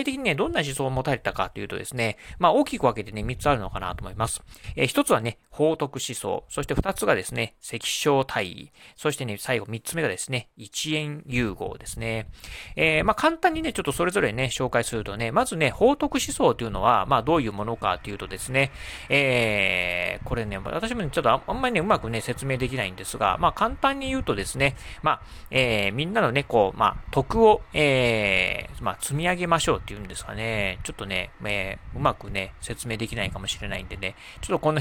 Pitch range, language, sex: 105-155 Hz, Japanese, male